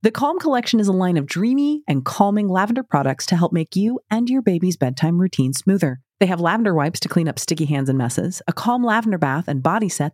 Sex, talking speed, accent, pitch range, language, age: female, 235 wpm, American, 150-215 Hz, English, 30-49